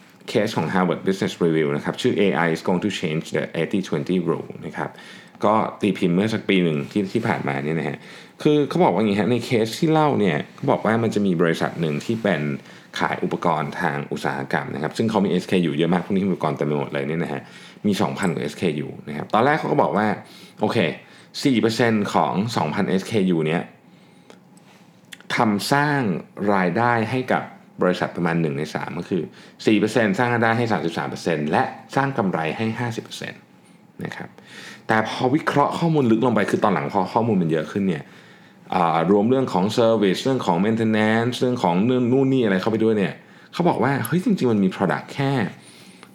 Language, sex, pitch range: Thai, male, 90-130 Hz